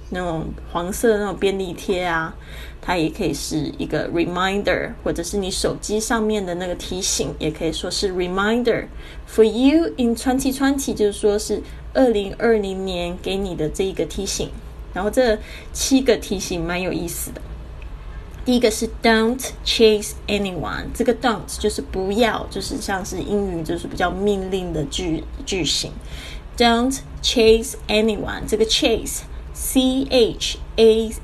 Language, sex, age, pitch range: Chinese, female, 10-29, 180-230 Hz